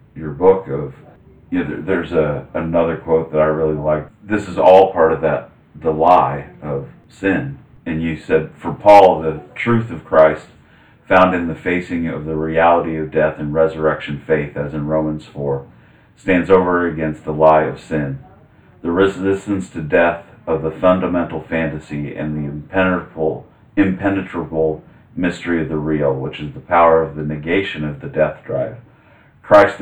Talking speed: 160 wpm